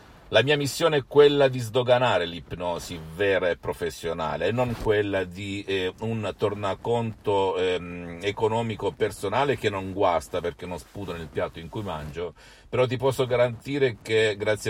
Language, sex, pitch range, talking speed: Italian, male, 85-115 Hz, 155 wpm